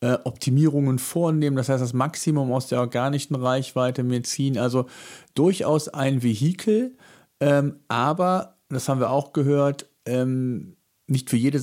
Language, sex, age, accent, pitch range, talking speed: German, male, 40-59, German, 125-145 Hz, 140 wpm